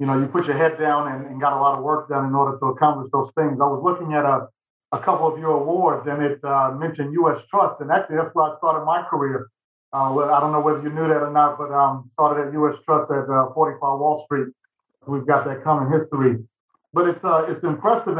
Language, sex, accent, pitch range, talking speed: English, male, American, 140-160 Hz, 255 wpm